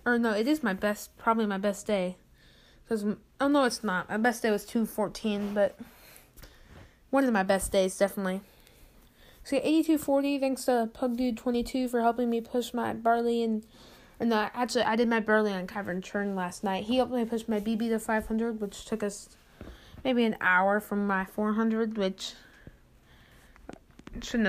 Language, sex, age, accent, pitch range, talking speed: English, female, 20-39, American, 205-245 Hz, 170 wpm